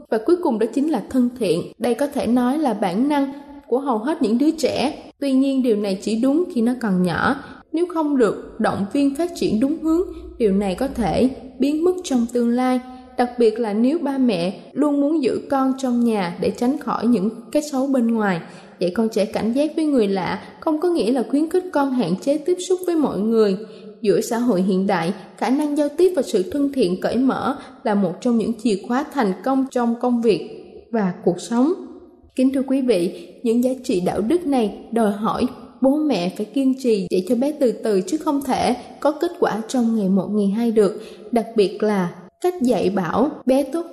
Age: 20-39